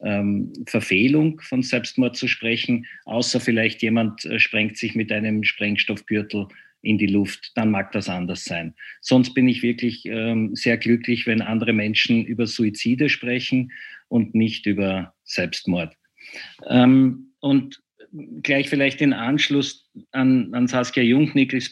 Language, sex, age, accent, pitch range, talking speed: German, male, 50-69, Austrian, 105-130 Hz, 125 wpm